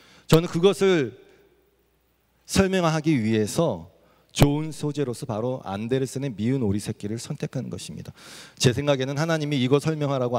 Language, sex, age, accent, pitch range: Korean, male, 40-59, native, 130-190 Hz